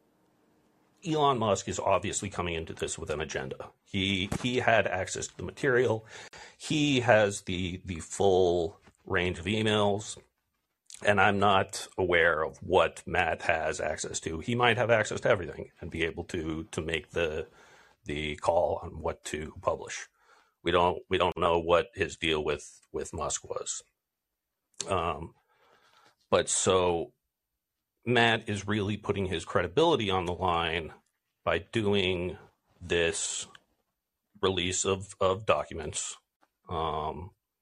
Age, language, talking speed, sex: 40-59, English, 135 wpm, male